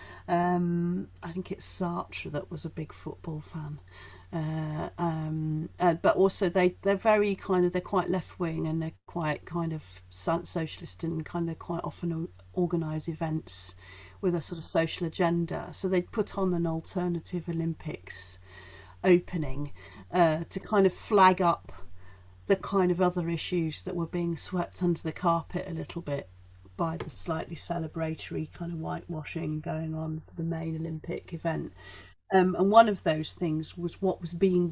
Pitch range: 155-180 Hz